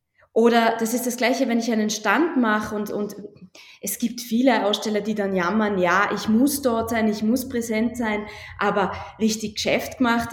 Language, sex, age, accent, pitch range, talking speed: German, female, 20-39, German, 210-255 Hz, 185 wpm